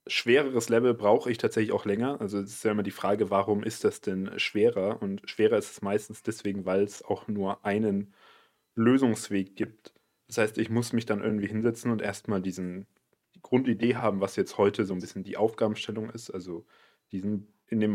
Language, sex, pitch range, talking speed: German, male, 95-110 Hz, 195 wpm